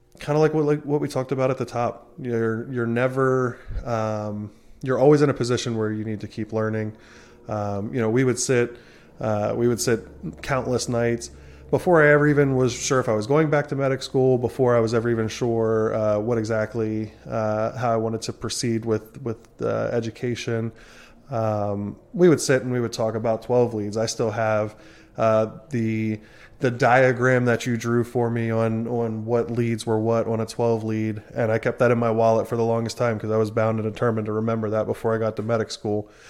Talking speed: 215 wpm